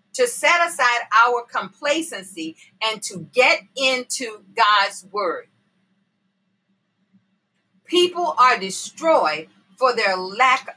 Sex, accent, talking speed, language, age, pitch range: female, American, 95 wpm, English, 40-59, 195-265 Hz